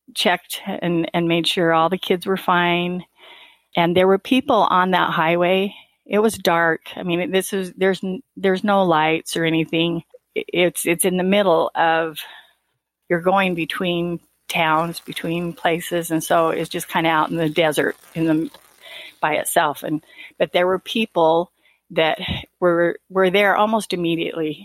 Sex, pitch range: female, 170-205 Hz